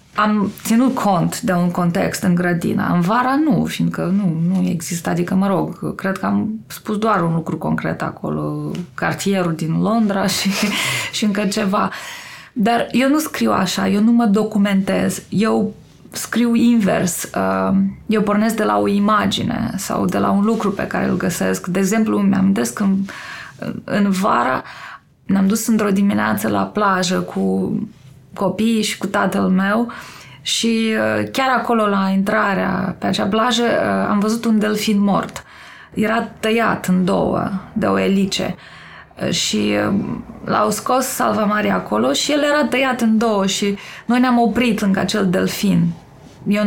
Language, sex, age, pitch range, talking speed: Romanian, female, 20-39, 180-225 Hz, 155 wpm